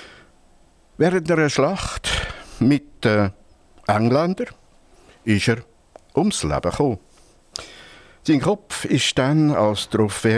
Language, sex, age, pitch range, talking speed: German, male, 60-79, 85-125 Hz, 100 wpm